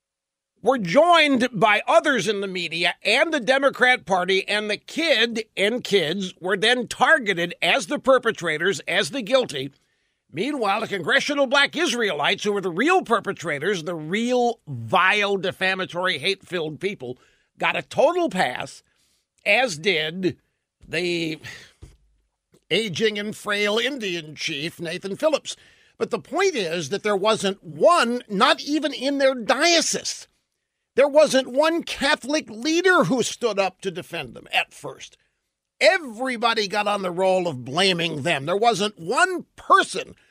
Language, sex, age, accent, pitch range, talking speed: English, male, 50-69, American, 185-270 Hz, 140 wpm